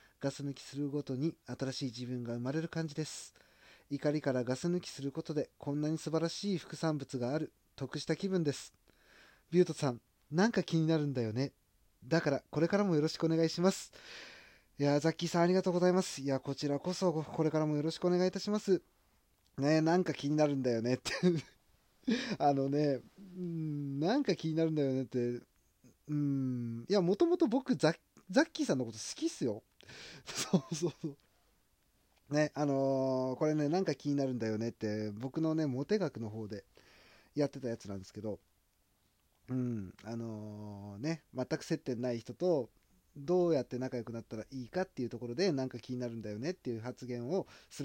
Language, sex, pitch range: Japanese, male, 120-160 Hz